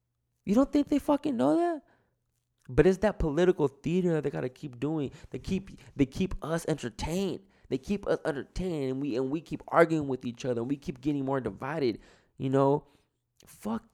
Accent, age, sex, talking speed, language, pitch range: American, 20-39, male, 195 wpm, English, 120-180 Hz